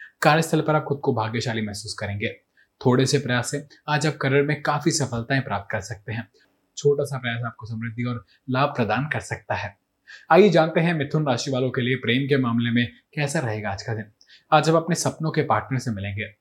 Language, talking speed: Hindi, 210 wpm